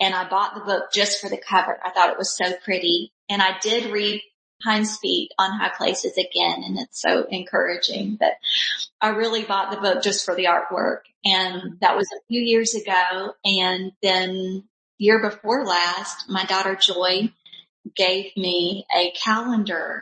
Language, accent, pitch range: English, American, 190-220 Hz